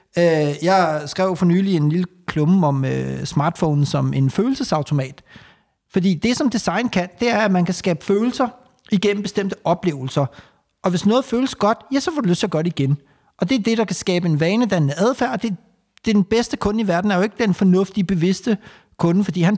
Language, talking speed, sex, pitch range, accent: Danish, 220 wpm, male, 165-205 Hz, native